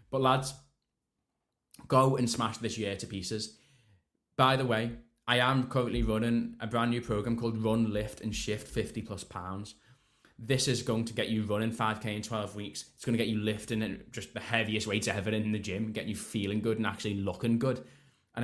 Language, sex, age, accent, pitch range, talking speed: English, male, 20-39, British, 105-120 Hz, 200 wpm